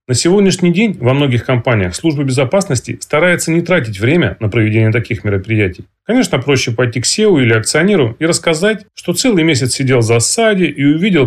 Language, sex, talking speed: Russian, male, 175 wpm